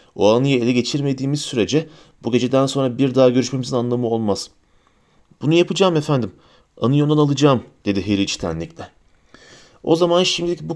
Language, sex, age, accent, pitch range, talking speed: Turkish, male, 40-59, native, 115-150 Hz, 140 wpm